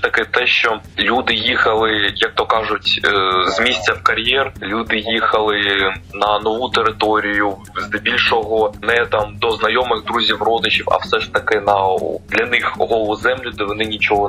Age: 20-39